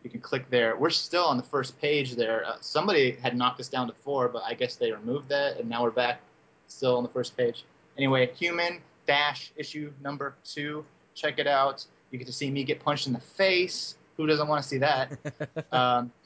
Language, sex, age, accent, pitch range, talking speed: English, male, 20-39, American, 125-145 Hz, 220 wpm